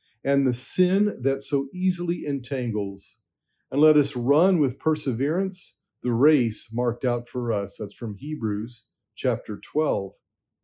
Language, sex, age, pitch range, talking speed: English, male, 40-59, 120-160 Hz, 135 wpm